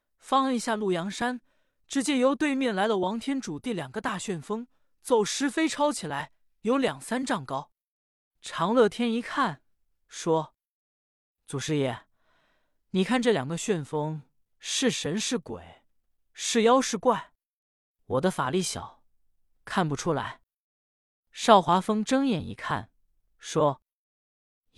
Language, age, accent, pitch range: Chinese, 20-39, native, 155-225 Hz